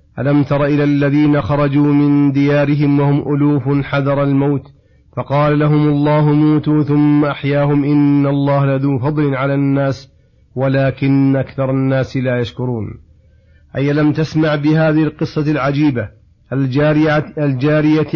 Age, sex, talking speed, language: 40-59, male, 115 wpm, Arabic